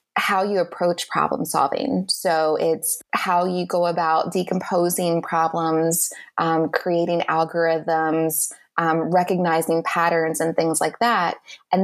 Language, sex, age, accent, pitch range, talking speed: English, female, 20-39, American, 160-190 Hz, 120 wpm